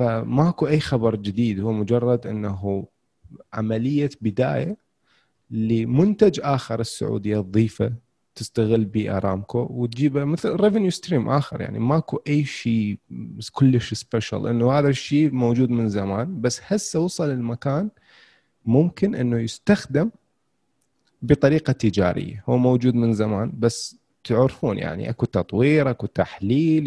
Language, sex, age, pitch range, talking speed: Arabic, male, 30-49, 115-155 Hz, 120 wpm